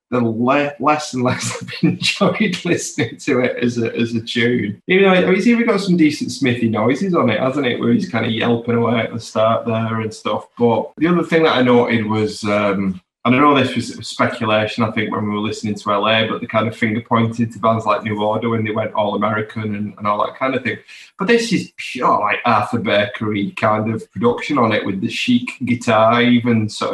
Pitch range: 110-150 Hz